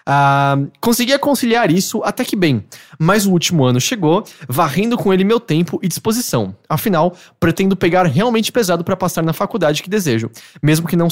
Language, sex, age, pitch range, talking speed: English, male, 20-39, 140-195 Hz, 185 wpm